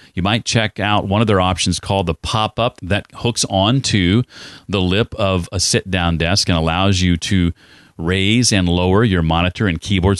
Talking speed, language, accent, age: 180 wpm, English, American, 40-59